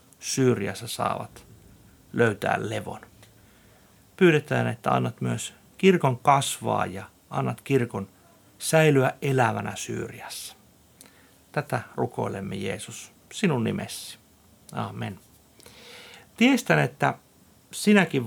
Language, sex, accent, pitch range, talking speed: Finnish, male, native, 110-155 Hz, 80 wpm